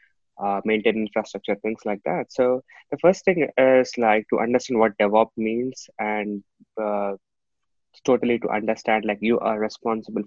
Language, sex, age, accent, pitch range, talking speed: English, male, 20-39, Indian, 110-125 Hz, 150 wpm